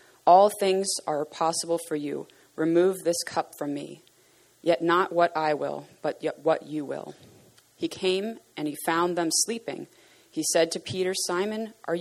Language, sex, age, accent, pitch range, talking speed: English, female, 30-49, American, 155-185 Hz, 170 wpm